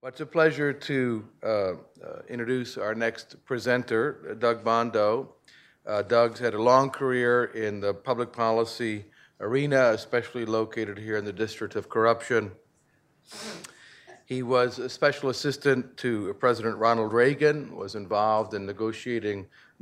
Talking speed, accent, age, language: 135 wpm, American, 50-69, English